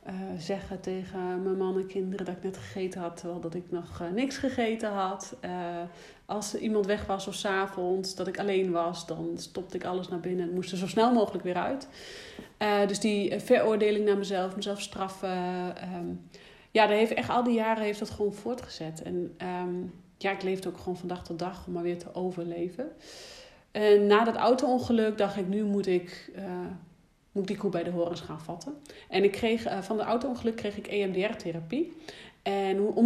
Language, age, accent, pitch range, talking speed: Dutch, 40-59, Dutch, 180-215 Hz, 210 wpm